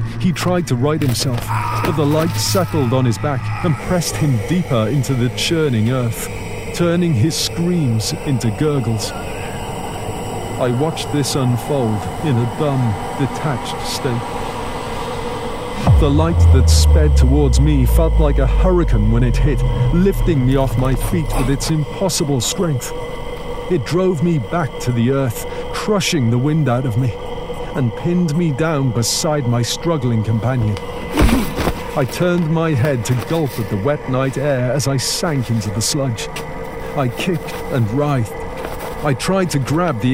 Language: English